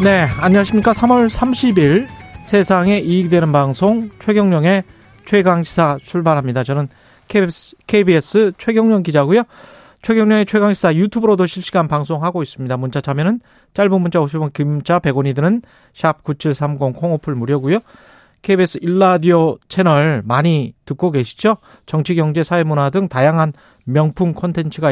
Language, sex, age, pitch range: Korean, male, 30-49, 145-195 Hz